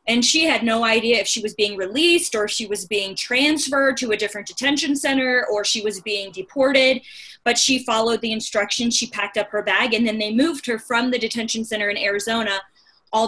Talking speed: 215 wpm